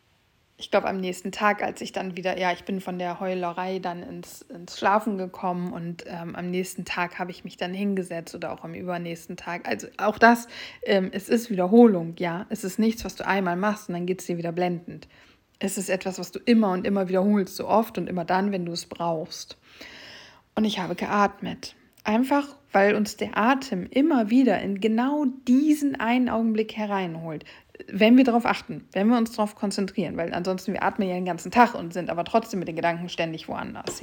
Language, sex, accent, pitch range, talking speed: German, female, German, 180-225 Hz, 210 wpm